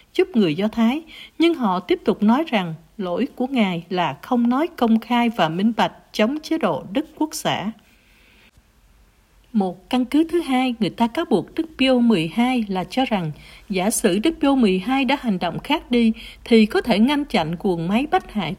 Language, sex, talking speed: Vietnamese, female, 195 wpm